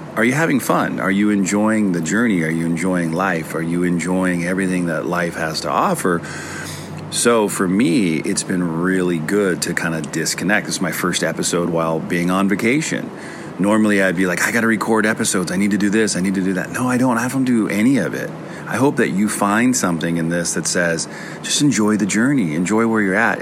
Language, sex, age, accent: English, male, 40-59, American